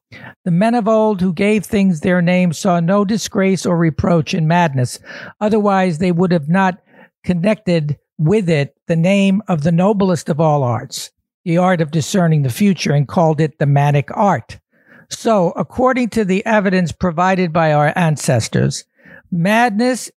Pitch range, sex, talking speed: 160-195 Hz, male, 160 wpm